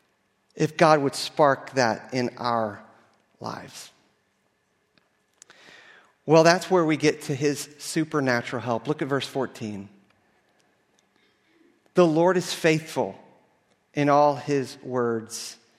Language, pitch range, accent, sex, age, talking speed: English, 125-165 Hz, American, male, 40-59, 110 wpm